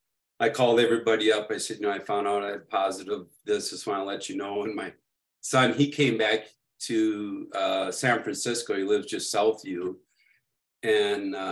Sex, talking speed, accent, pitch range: male, 200 wpm, American, 115-150 Hz